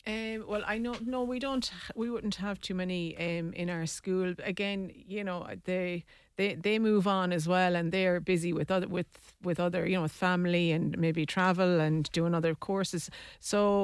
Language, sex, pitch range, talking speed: English, female, 170-190 Hz, 200 wpm